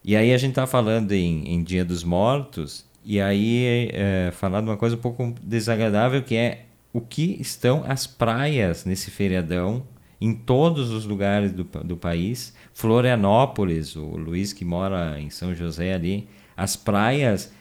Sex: male